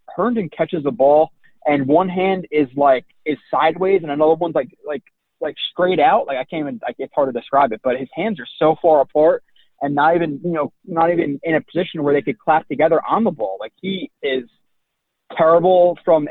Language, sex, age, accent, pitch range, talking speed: English, male, 20-39, American, 130-155 Hz, 220 wpm